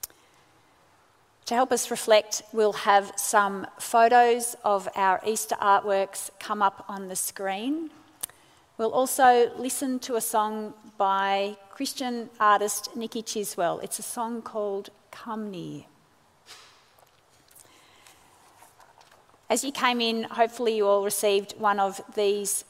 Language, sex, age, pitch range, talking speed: English, female, 40-59, 200-240 Hz, 120 wpm